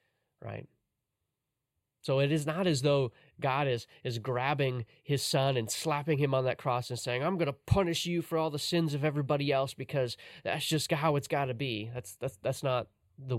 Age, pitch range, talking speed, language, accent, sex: 30-49, 110-135 Hz, 205 wpm, English, American, male